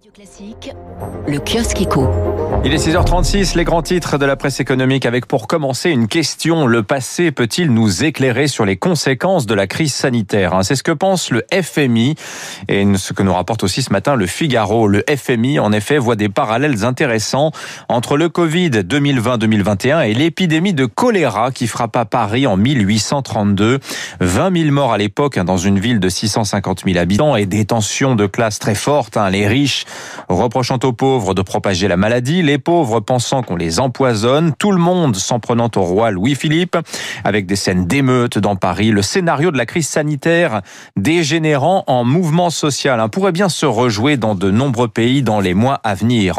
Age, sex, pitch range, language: 40-59, male, 110-150 Hz, French